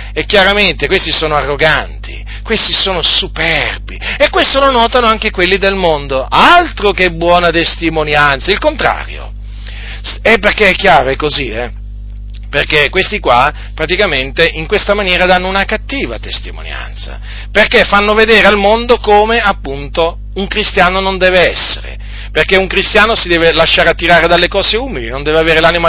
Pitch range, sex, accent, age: 145-205 Hz, male, native, 40-59